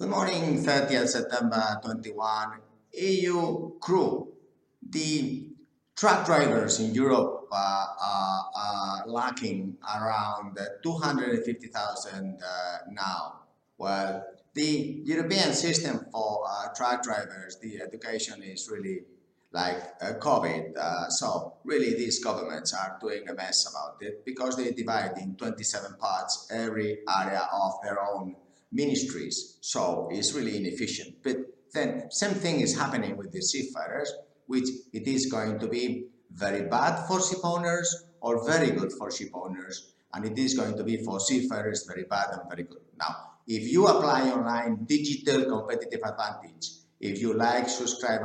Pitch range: 100-130 Hz